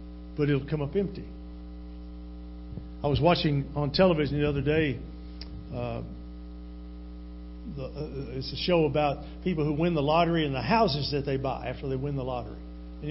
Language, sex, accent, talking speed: English, male, American, 170 wpm